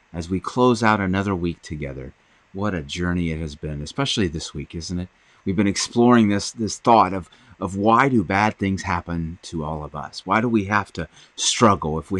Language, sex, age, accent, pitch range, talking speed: English, male, 30-49, American, 85-105 Hz, 210 wpm